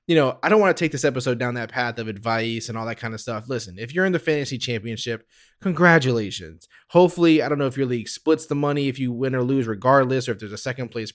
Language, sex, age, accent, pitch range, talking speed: English, male, 20-39, American, 120-160 Hz, 270 wpm